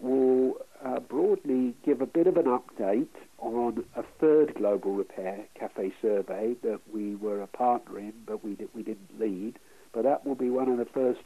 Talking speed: 180 wpm